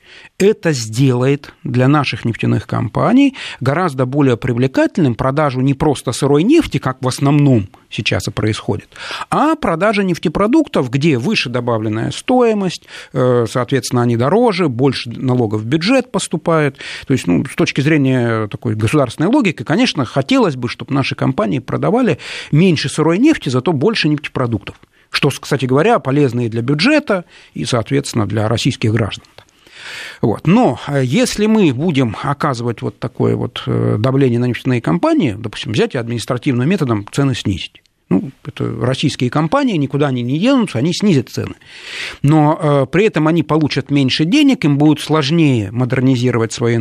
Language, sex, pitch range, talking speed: Russian, male, 125-170 Hz, 140 wpm